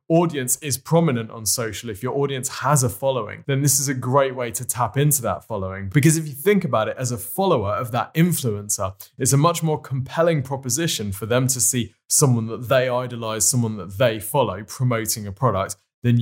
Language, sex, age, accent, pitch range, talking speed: English, male, 20-39, British, 110-135 Hz, 205 wpm